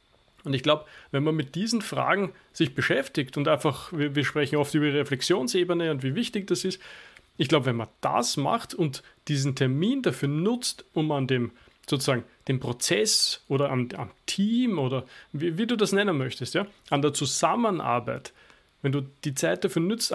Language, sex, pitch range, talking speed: German, male, 140-175 Hz, 180 wpm